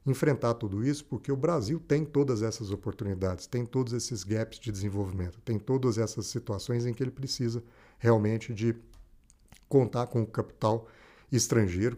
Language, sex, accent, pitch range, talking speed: Portuguese, male, Brazilian, 100-120 Hz, 155 wpm